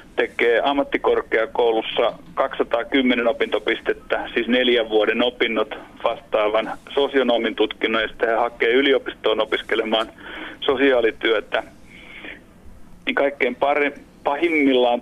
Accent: native